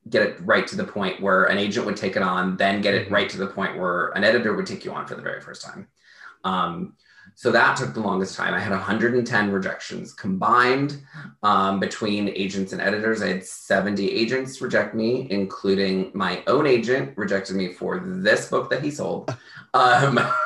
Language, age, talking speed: English, 20-39, 200 wpm